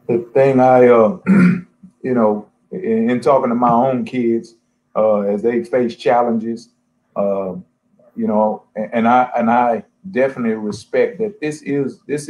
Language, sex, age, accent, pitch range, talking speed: English, male, 30-49, American, 120-180 Hz, 155 wpm